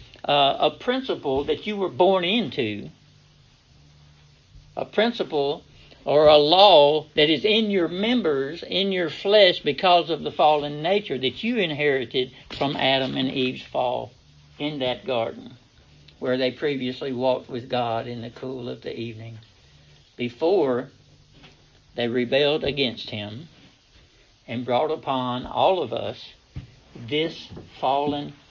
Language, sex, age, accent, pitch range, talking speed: English, male, 60-79, American, 120-155 Hz, 130 wpm